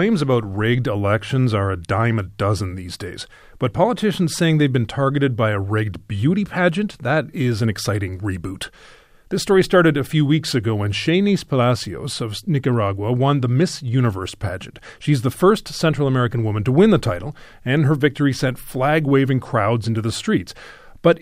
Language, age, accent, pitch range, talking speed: English, 40-59, American, 110-150 Hz, 180 wpm